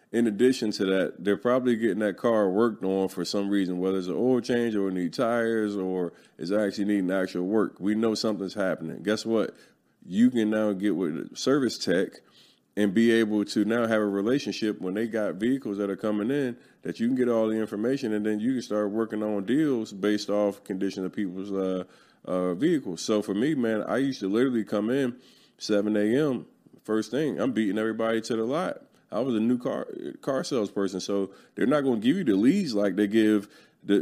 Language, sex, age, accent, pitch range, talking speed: English, male, 20-39, American, 105-140 Hz, 210 wpm